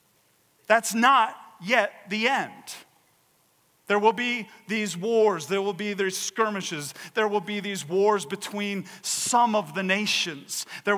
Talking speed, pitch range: 140 wpm, 150-205 Hz